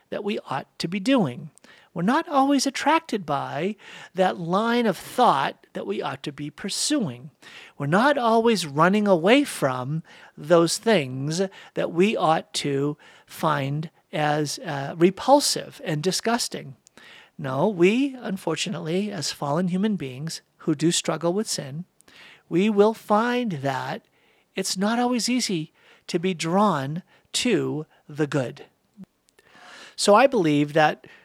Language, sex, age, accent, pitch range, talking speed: English, male, 50-69, American, 155-210 Hz, 135 wpm